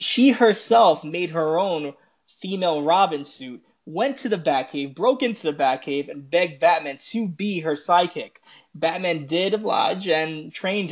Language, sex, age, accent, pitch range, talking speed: English, male, 20-39, American, 145-200 Hz, 155 wpm